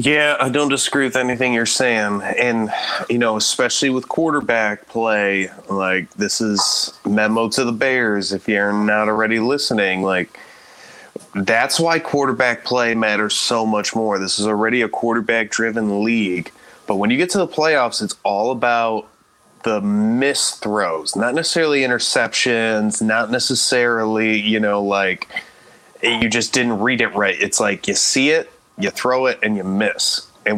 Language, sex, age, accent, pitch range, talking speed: English, male, 20-39, American, 105-130 Hz, 160 wpm